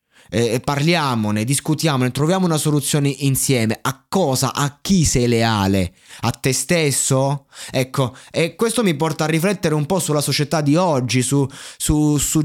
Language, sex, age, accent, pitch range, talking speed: Italian, male, 20-39, native, 130-165 Hz, 155 wpm